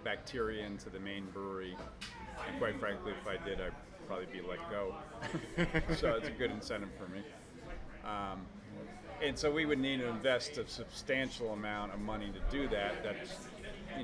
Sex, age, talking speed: male, 40-59, 180 wpm